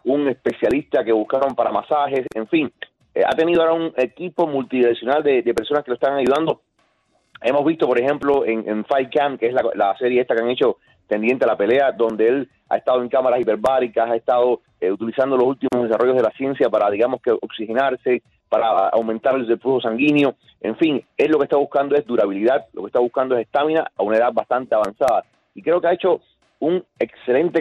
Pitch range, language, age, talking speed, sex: 120-150 Hz, Spanish, 30-49, 210 wpm, male